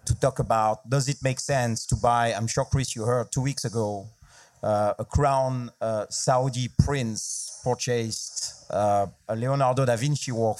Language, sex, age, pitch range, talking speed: English, male, 40-59, 110-135 Hz, 170 wpm